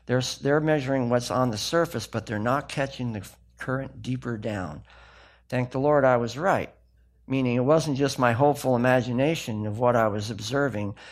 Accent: American